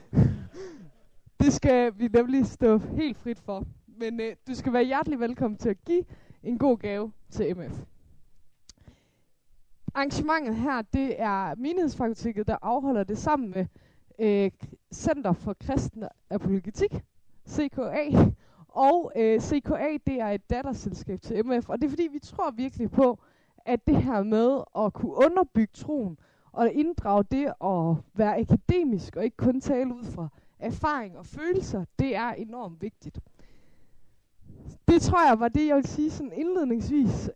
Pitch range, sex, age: 210-275 Hz, female, 20-39